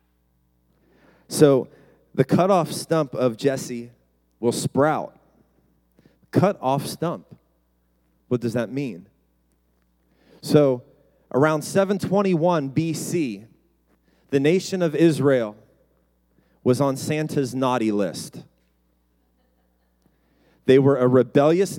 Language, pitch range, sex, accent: English, 100-165 Hz, male, American